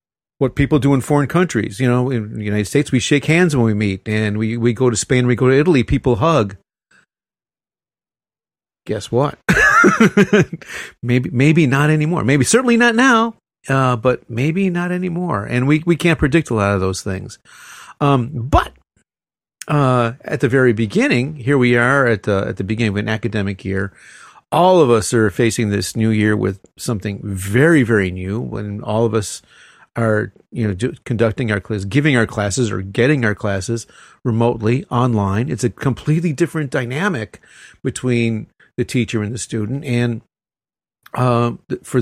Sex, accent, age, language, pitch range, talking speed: male, American, 40-59, English, 110-145 Hz, 175 wpm